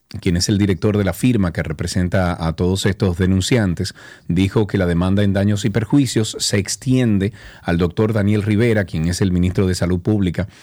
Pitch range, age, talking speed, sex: 95-110 Hz, 40-59, 190 wpm, male